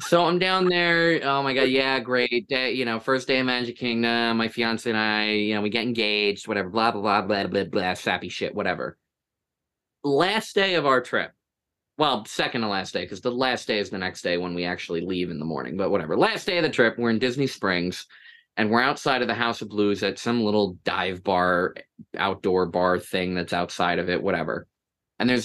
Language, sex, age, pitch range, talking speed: English, male, 20-39, 105-155 Hz, 225 wpm